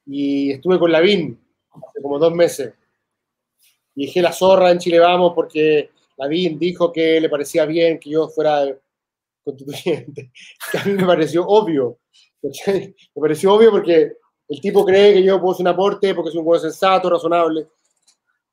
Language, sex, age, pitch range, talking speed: Spanish, male, 30-49, 160-200 Hz, 165 wpm